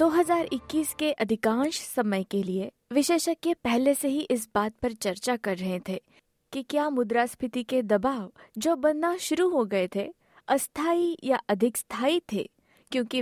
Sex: female